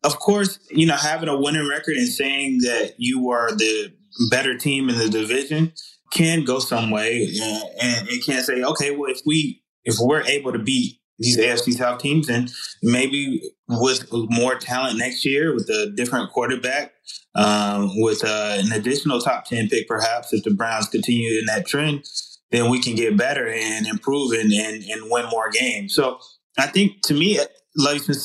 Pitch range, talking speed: 115-155 Hz, 195 wpm